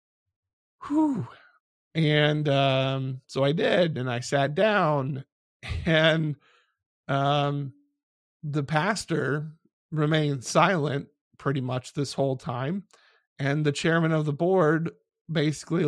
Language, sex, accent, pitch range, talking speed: English, male, American, 140-170 Hz, 105 wpm